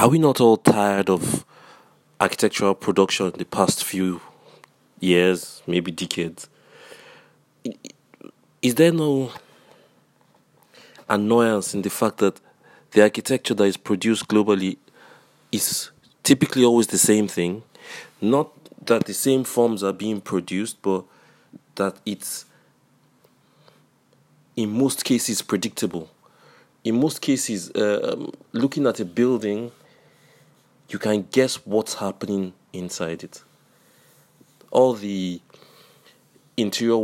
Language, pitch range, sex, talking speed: English, 95-110 Hz, male, 110 wpm